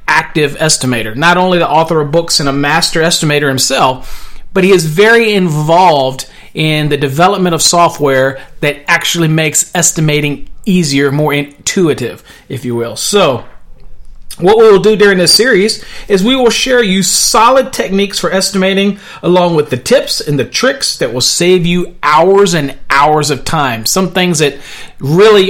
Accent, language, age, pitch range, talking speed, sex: American, English, 40-59, 145-200 Hz, 160 wpm, male